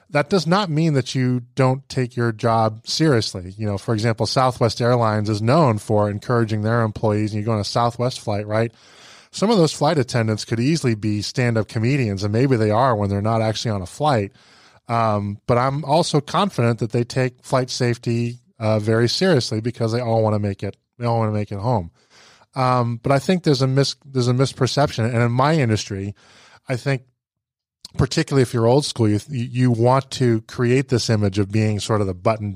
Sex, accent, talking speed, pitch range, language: male, American, 210 wpm, 110-135 Hz, English